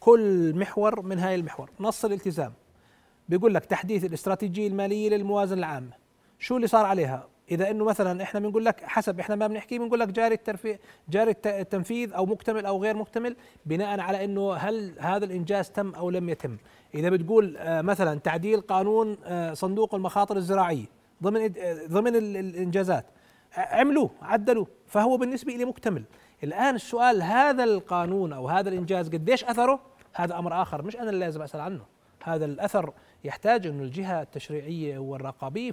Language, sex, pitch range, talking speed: Arabic, male, 165-215 Hz, 155 wpm